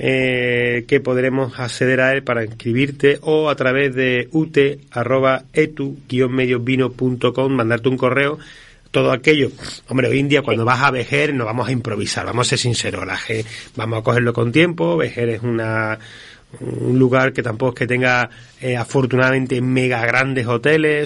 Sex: male